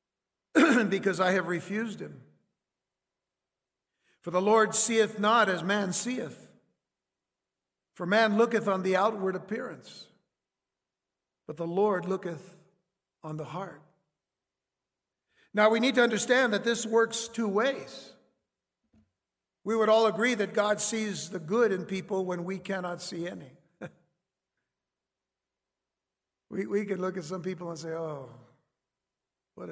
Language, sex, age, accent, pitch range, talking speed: English, male, 60-79, American, 170-220 Hz, 130 wpm